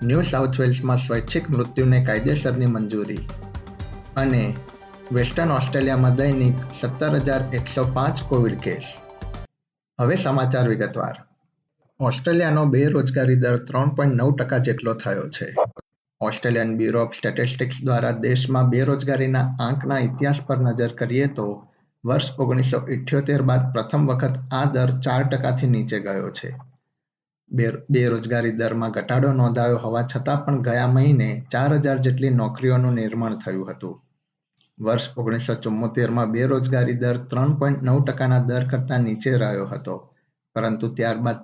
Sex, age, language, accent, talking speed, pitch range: male, 50-69, Gujarati, native, 65 wpm, 120-135 Hz